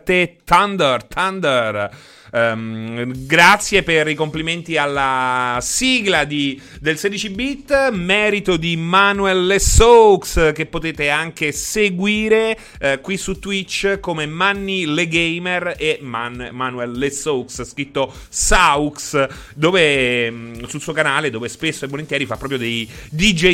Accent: native